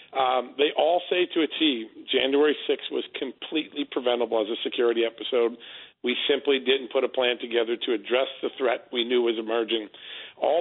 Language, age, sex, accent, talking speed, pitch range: English, 40-59, male, American, 180 wpm, 125-155 Hz